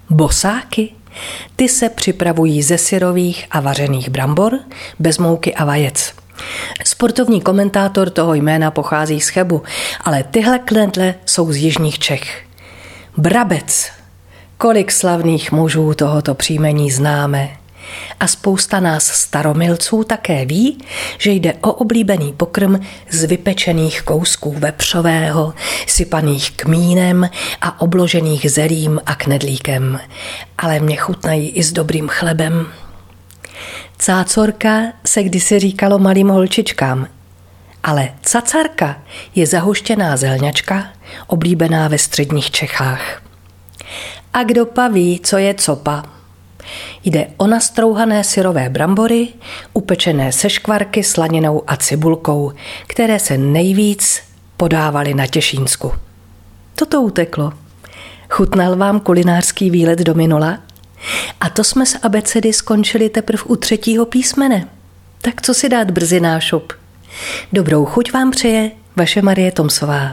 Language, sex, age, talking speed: Czech, female, 40-59, 115 wpm